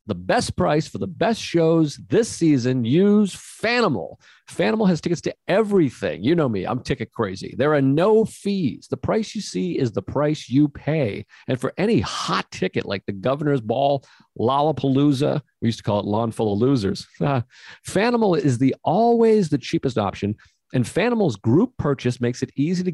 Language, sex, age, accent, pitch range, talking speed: English, male, 40-59, American, 115-175 Hz, 180 wpm